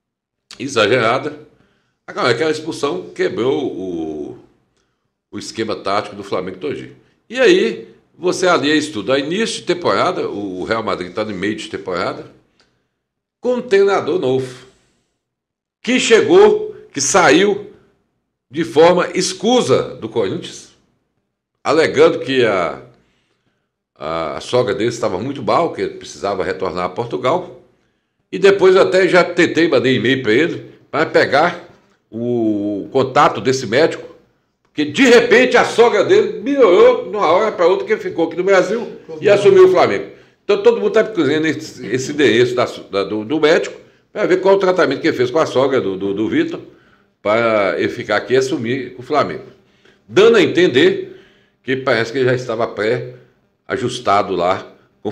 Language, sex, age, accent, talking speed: Portuguese, male, 60-79, Brazilian, 150 wpm